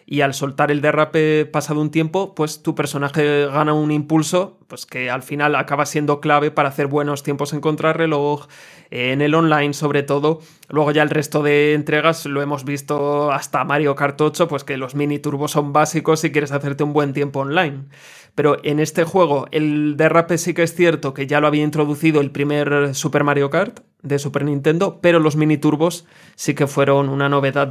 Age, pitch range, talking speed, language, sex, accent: 20-39, 145-160 Hz, 195 wpm, Spanish, male, Spanish